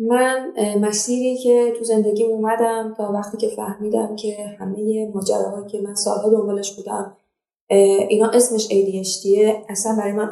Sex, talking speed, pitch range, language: female, 145 wpm, 210-245 Hz, Persian